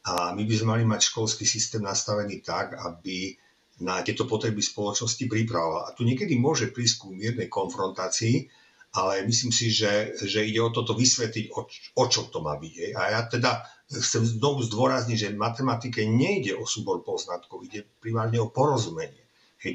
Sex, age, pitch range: male, 50-69, 105-130 Hz